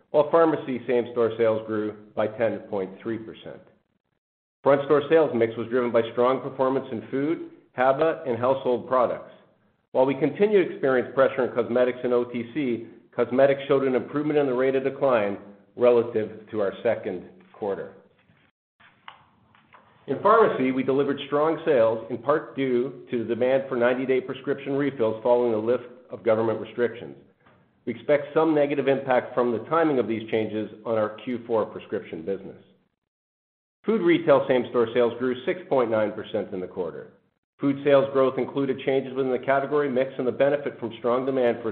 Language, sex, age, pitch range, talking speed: English, male, 50-69, 115-140 Hz, 155 wpm